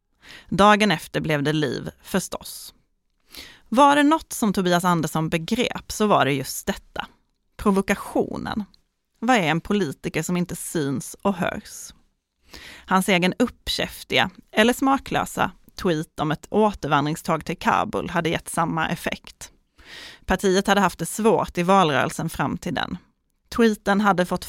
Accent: native